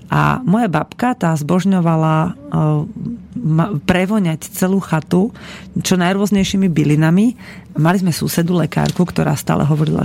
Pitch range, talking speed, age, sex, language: 160-185 Hz, 115 wpm, 30-49, female, Slovak